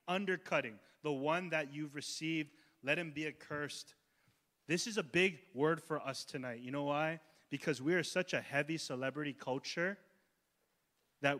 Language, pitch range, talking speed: English, 130-185 Hz, 160 wpm